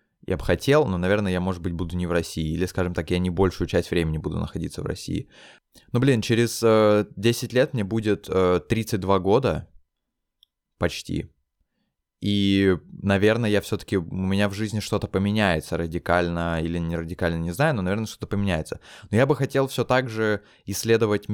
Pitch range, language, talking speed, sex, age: 85-100 Hz, Russian, 180 wpm, male, 20-39